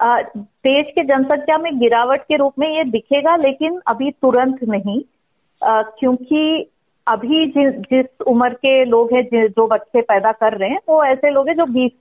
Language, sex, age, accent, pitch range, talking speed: Hindi, female, 40-59, native, 225-275 Hz, 175 wpm